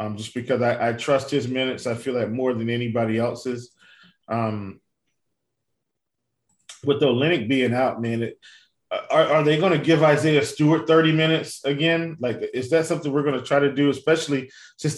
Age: 20-39